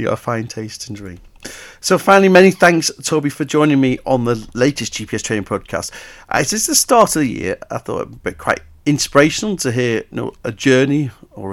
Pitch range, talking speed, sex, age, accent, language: 100-130 Hz, 210 wpm, male, 40-59, British, English